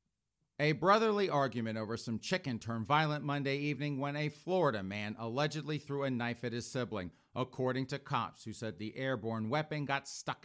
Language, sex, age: English, male, 40-59